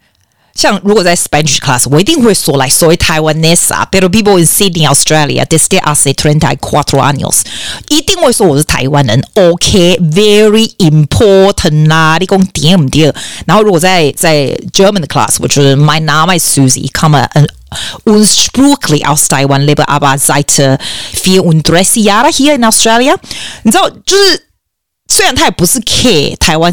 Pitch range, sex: 145-195 Hz, female